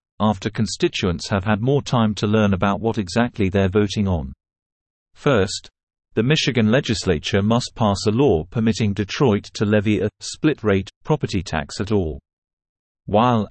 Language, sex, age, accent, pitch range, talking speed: English, male, 40-59, British, 95-115 Hz, 150 wpm